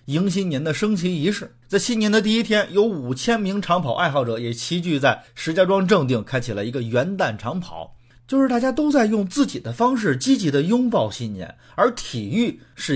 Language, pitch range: Chinese, 115-185 Hz